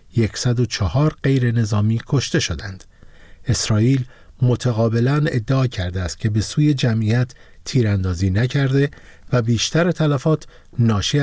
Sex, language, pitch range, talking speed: male, Persian, 105-135 Hz, 110 wpm